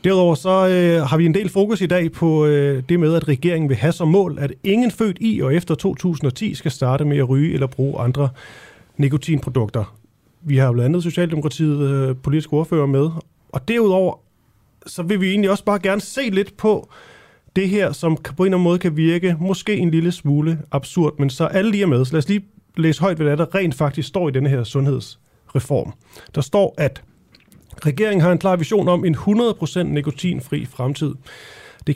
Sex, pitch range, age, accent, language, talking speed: male, 135-180 Hz, 30-49, native, Danish, 200 wpm